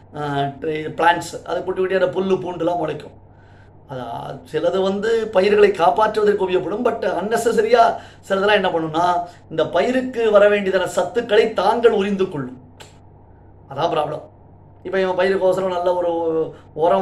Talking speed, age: 115 wpm, 30-49